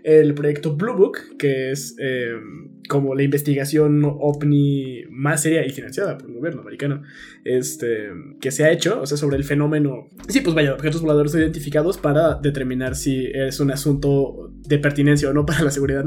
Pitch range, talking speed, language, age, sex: 135-155 Hz, 180 wpm, Spanish, 20-39, male